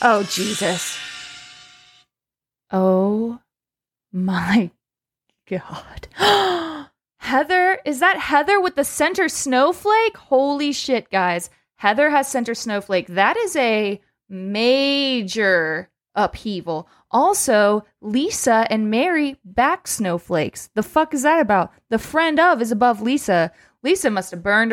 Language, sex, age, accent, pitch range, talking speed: English, female, 20-39, American, 195-275 Hz, 110 wpm